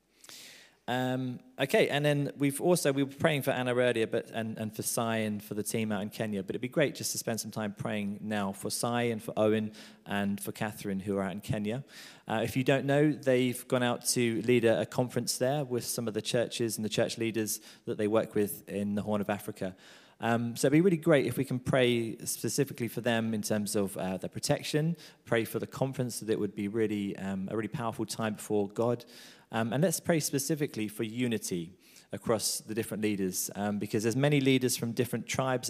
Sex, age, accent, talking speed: male, 20-39, British, 225 wpm